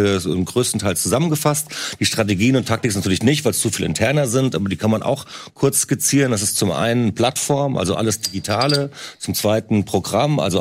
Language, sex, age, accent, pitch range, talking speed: German, male, 40-59, German, 105-130 Hz, 200 wpm